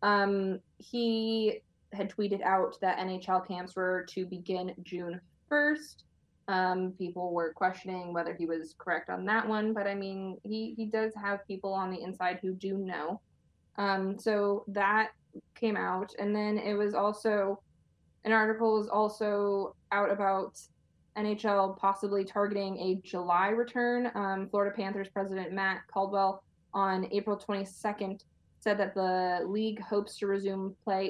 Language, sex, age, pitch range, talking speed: English, female, 20-39, 185-210 Hz, 150 wpm